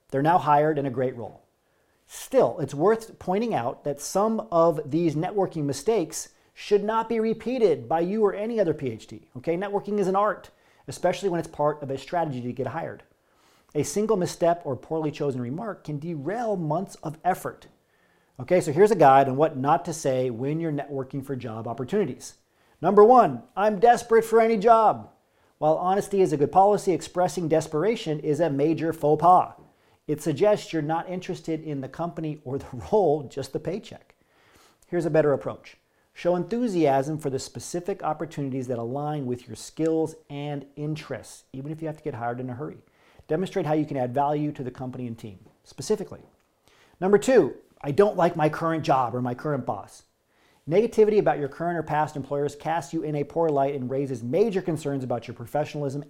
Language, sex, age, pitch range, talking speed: English, male, 40-59, 135-180 Hz, 190 wpm